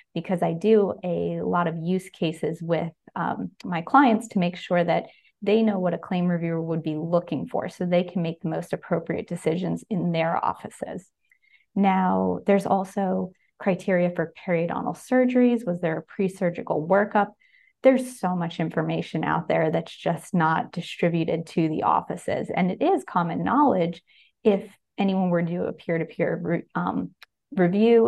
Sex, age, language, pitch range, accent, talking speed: female, 30-49, English, 170-220 Hz, American, 160 wpm